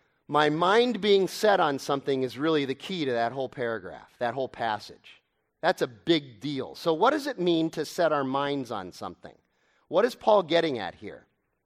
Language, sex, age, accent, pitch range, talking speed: English, male, 40-59, American, 145-205 Hz, 195 wpm